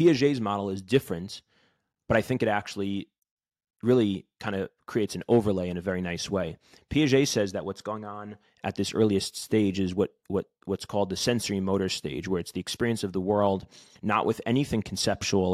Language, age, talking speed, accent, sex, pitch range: English, 30-49, 195 wpm, American, male, 95-115 Hz